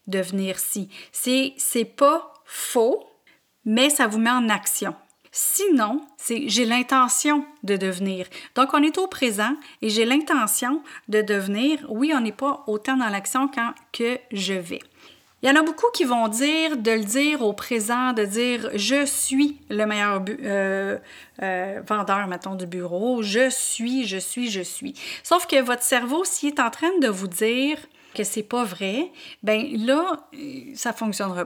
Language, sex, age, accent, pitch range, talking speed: French, female, 30-49, Canadian, 205-275 Hz, 170 wpm